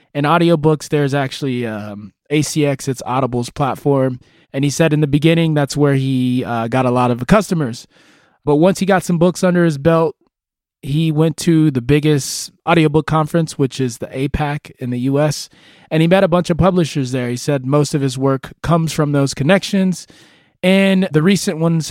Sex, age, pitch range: male, 20-39, 130-170 Hz